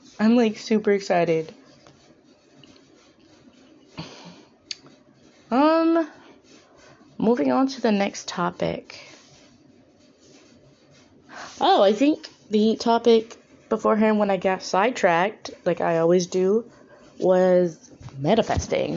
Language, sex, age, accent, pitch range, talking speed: English, female, 20-39, American, 175-235 Hz, 85 wpm